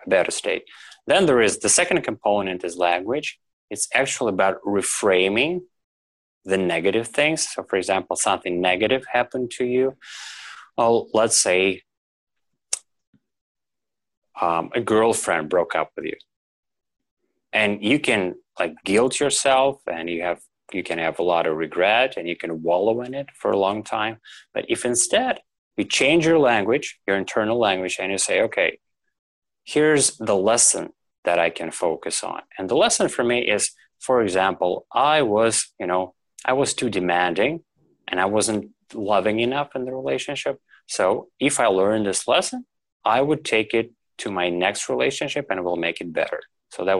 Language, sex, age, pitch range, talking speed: English, male, 20-39, 95-135 Hz, 165 wpm